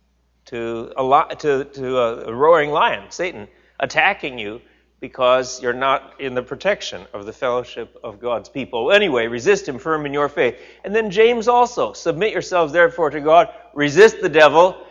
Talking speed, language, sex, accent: 155 wpm, English, male, American